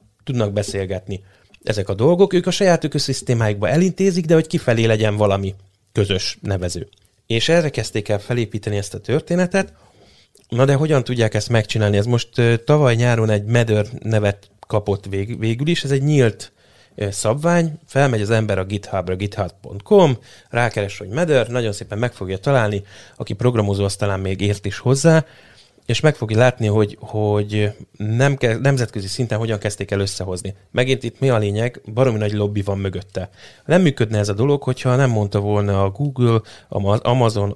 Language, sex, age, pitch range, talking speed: Hungarian, male, 30-49, 100-125 Hz, 165 wpm